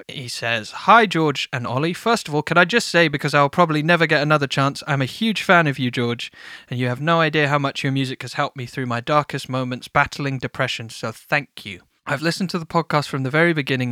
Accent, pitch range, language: British, 130-150 Hz, English